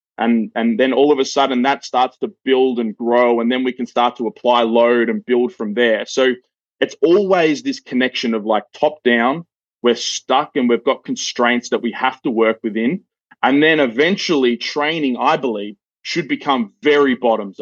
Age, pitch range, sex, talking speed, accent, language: 20-39, 115-130 Hz, male, 190 wpm, Australian, English